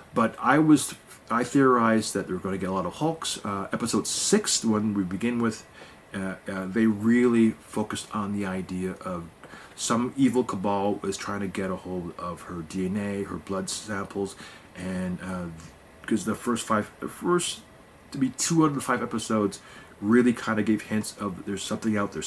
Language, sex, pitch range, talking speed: English, male, 95-120 Hz, 195 wpm